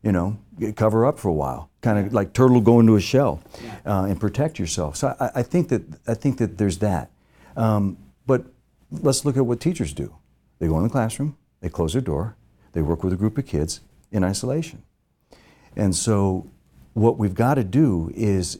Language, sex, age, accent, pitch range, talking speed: English, male, 60-79, American, 95-125 Hz, 205 wpm